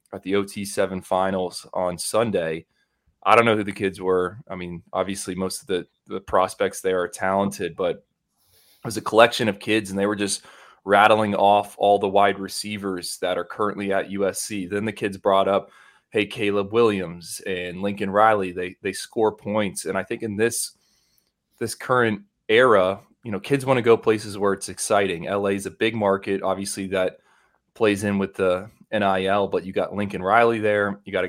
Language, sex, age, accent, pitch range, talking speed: English, male, 20-39, American, 95-110 Hz, 195 wpm